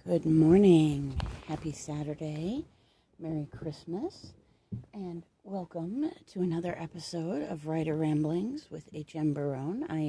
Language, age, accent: English, 40-59, American